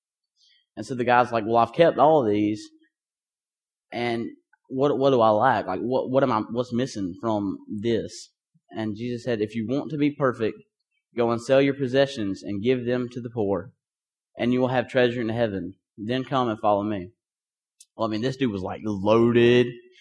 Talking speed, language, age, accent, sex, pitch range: 200 wpm, English, 20-39, American, male, 110-135 Hz